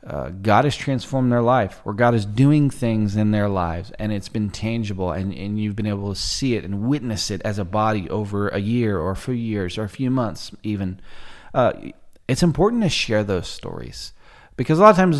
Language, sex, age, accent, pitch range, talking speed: English, male, 30-49, American, 100-125 Hz, 220 wpm